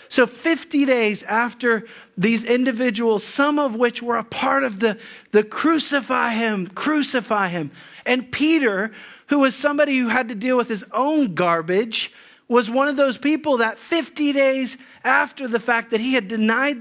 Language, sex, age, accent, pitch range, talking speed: English, male, 40-59, American, 205-260 Hz, 170 wpm